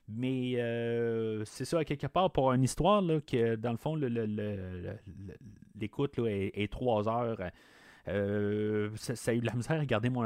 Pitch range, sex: 105-140 Hz, male